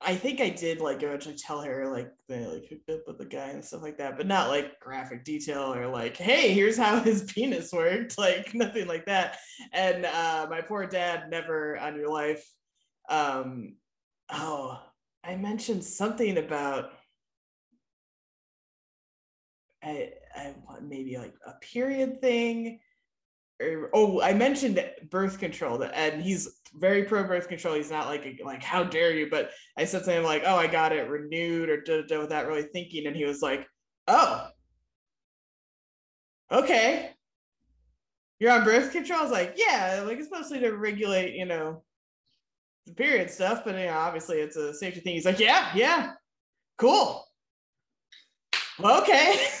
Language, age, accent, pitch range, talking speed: English, 20-39, American, 150-215 Hz, 165 wpm